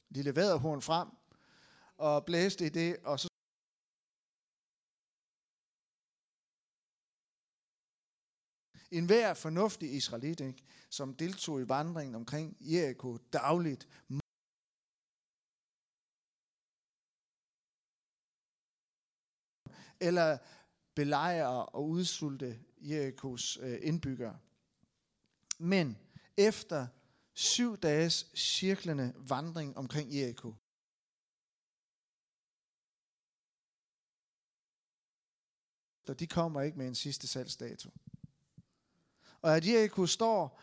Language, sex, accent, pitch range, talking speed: Danish, male, native, 135-170 Hz, 70 wpm